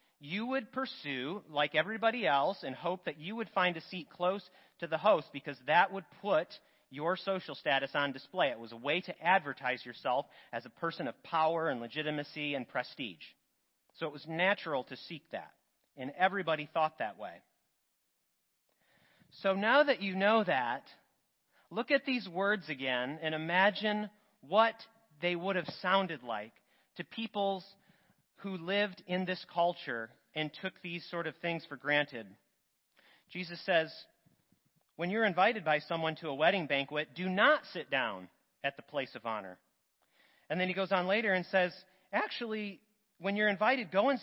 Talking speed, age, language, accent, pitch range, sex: 165 wpm, 40-59, English, American, 150-195 Hz, male